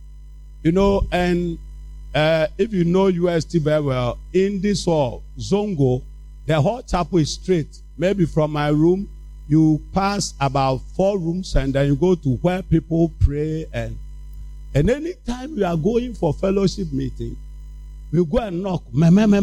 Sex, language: male, English